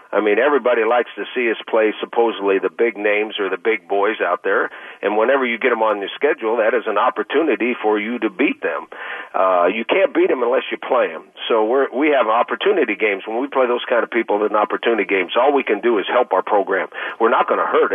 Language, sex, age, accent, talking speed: English, male, 50-69, American, 245 wpm